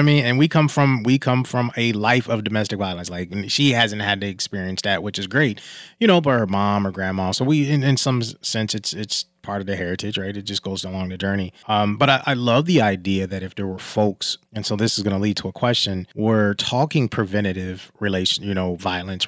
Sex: male